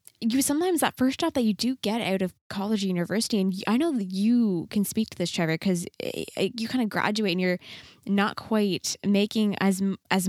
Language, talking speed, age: English, 210 wpm, 10-29